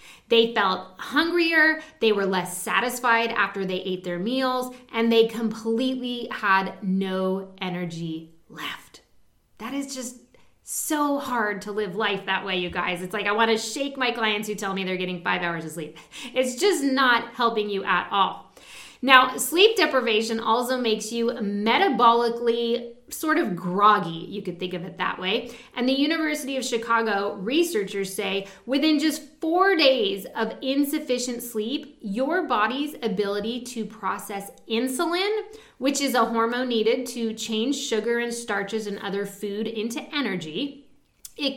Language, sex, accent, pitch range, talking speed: English, female, American, 205-265 Hz, 155 wpm